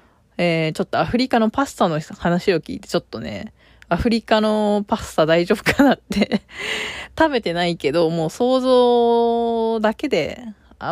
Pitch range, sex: 170-235 Hz, female